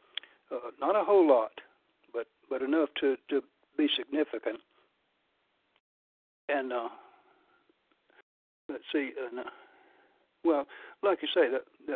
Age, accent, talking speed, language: 60-79, American, 115 wpm, English